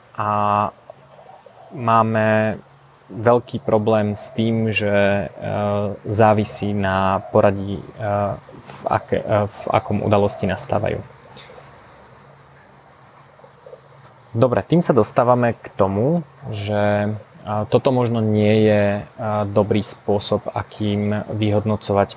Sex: male